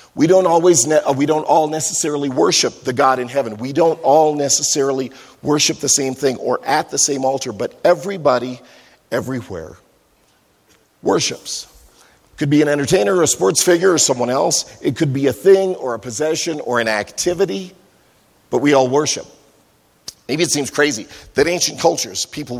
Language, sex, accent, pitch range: English, male, American, 120-155 Hz